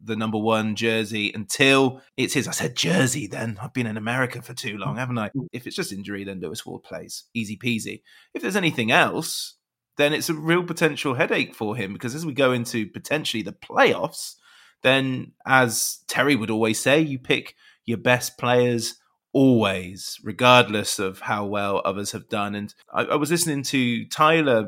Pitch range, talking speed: 110-145 Hz, 185 wpm